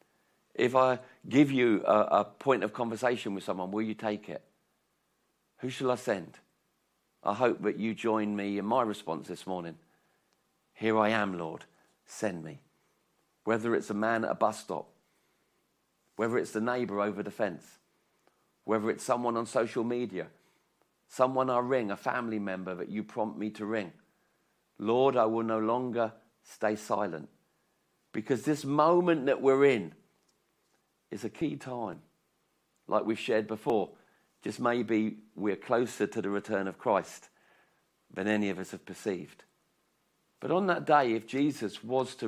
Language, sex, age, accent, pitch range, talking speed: English, male, 50-69, British, 105-125 Hz, 160 wpm